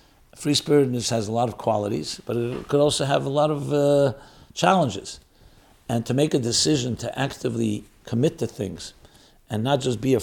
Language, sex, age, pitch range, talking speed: English, male, 60-79, 105-135 Hz, 180 wpm